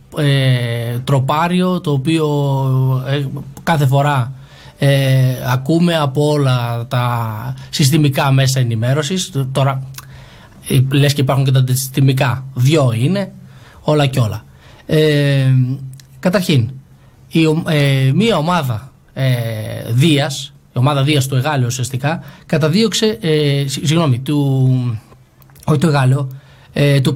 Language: Greek